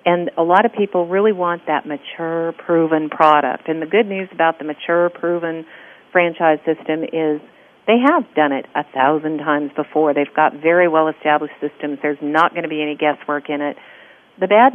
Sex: female